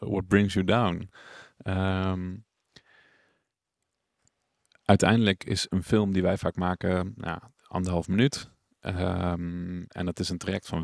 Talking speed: 110 wpm